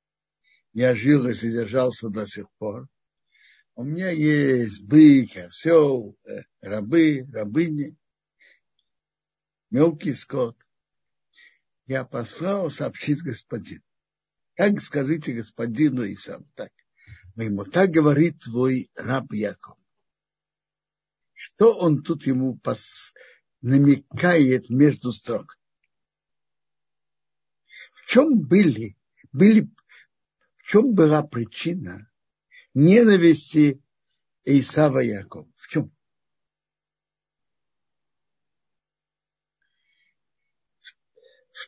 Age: 60-79